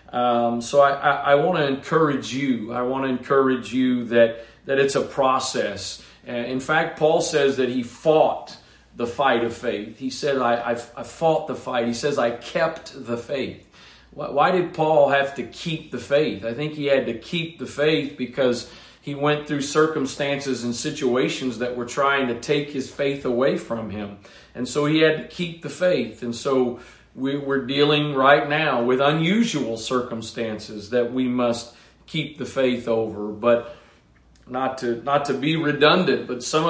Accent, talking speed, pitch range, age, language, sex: American, 180 wpm, 120-145 Hz, 40-59, English, male